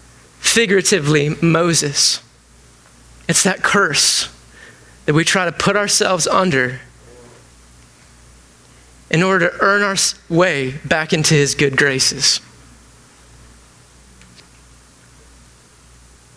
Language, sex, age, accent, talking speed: English, male, 30-49, American, 85 wpm